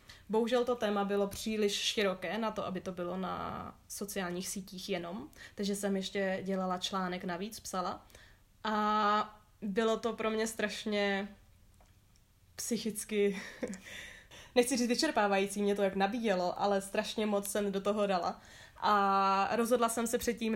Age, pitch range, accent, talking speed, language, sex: 20-39, 190-220 Hz, native, 140 wpm, Czech, female